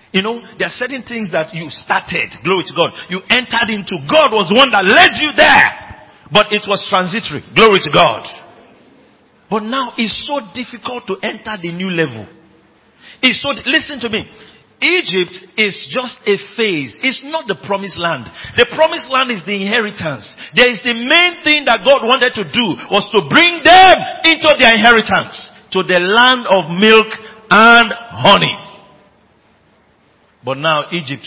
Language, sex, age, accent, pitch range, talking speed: English, male, 50-69, Nigerian, 150-240 Hz, 170 wpm